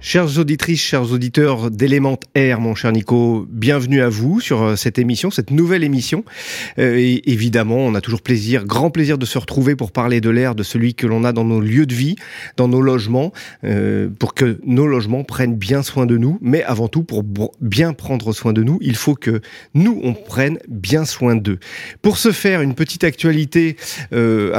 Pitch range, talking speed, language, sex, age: 115-145 Hz, 200 wpm, French, male, 30-49